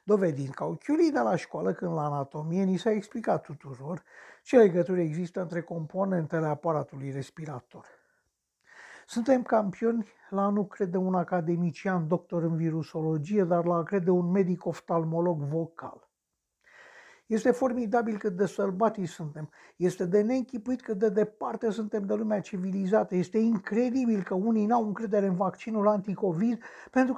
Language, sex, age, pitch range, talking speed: Romanian, male, 60-79, 170-225 Hz, 135 wpm